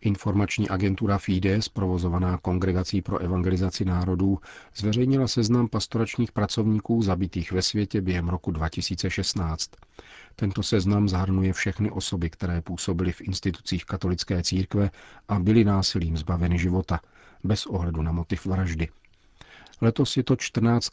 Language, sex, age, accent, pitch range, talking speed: Czech, male, 40-59, native, 90-105 Hz, 125 wpm